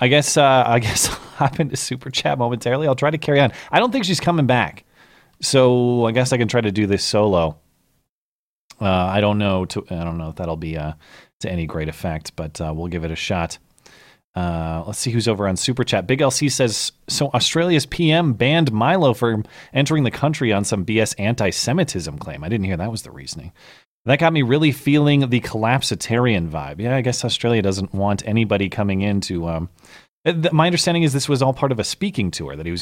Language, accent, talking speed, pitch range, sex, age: English, American, 220 wpm, 95-140 Hz, male, 30-49